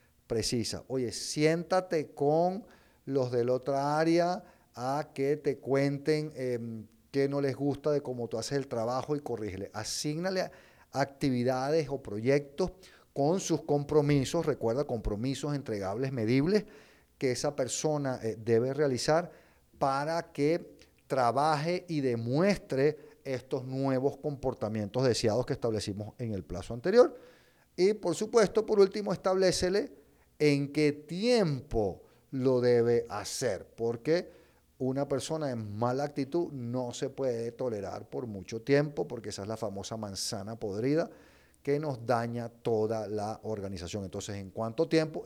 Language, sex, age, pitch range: Spanish, male, 50-69, 115-155 Hz